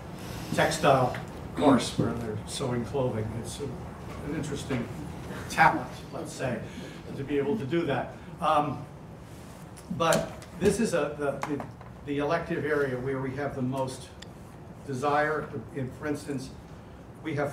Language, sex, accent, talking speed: English, male, American, 130 wpm